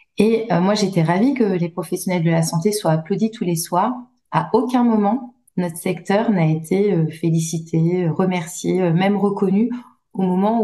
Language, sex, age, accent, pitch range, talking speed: French, female, 30-49, French, 170-220 Hz, 160 wpm